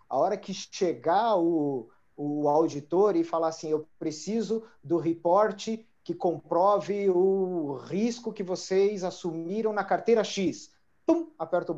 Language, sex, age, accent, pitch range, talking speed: Portuguese, male, 40-59, Brazilian, 155-205 Hz, 140 wpm